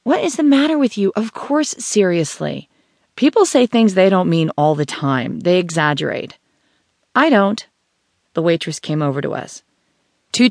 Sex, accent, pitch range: female, American, 150-220 Hz